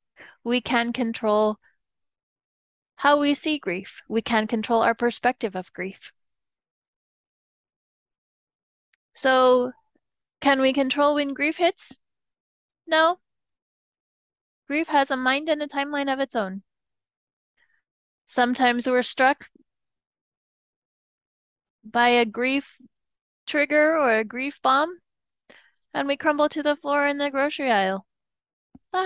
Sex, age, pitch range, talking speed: female, 30-49, 225-300 Hz, 110 wpm